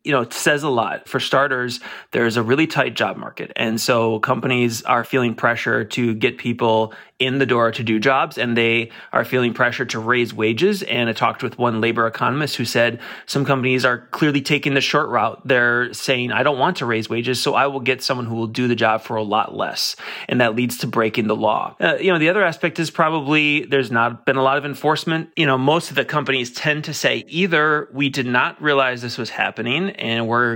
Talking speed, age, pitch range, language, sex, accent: 230 wpm, 30-49, 120-140 Hz, English, male, American